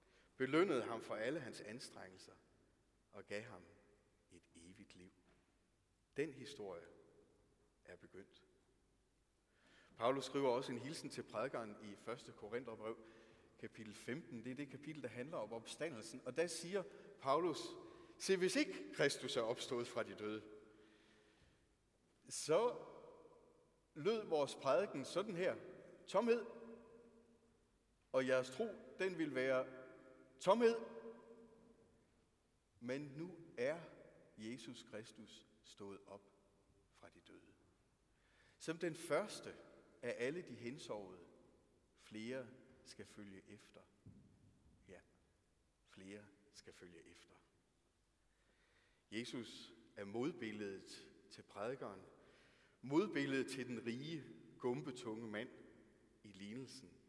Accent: native